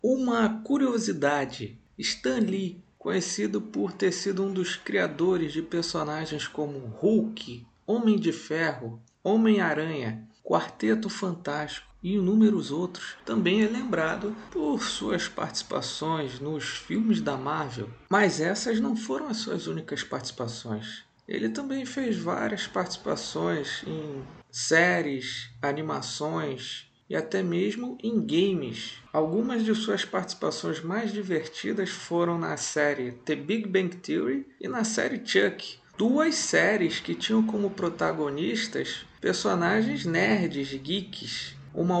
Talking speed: 115 wpm